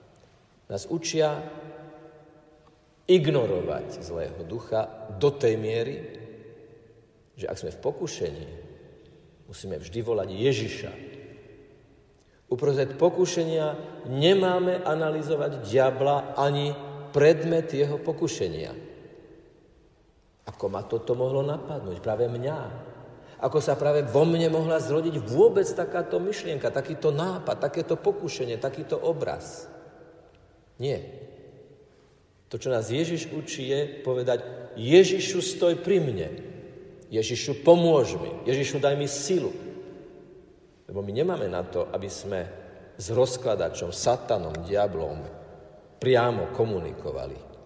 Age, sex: 50-69, male